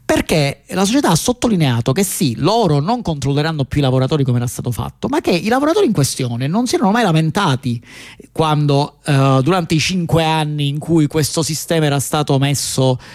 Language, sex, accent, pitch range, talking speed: Italian, male, native, 135-175 Hz, 185 wpm